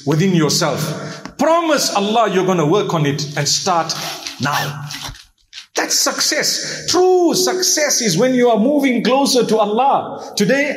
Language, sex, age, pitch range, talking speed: English, male, 50-69, 200-270 Hz, 145 wpm